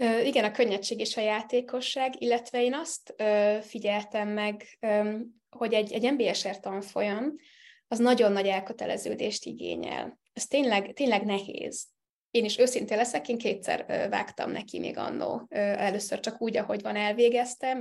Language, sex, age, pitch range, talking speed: Hungarian, female, 20-39, 210-245 Hz, 140 wpm